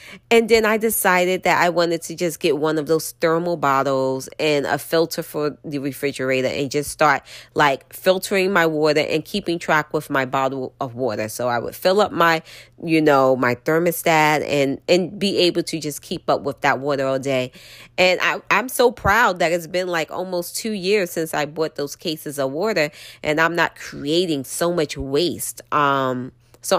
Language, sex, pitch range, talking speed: English, female, 150-205 Hz, 195 wpm